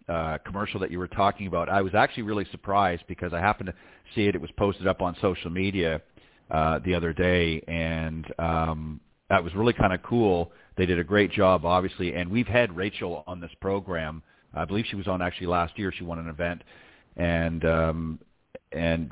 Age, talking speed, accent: 40-59, 205 wpm, American